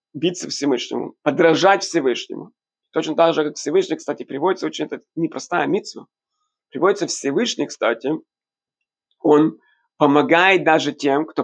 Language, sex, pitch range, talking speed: Russian, male, 145-220 Hz, 115 wpm